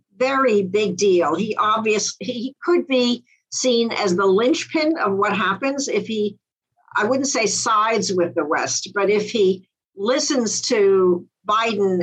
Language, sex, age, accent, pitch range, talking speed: English, female, 60-79, American, 190-245 Hz, 150 wpm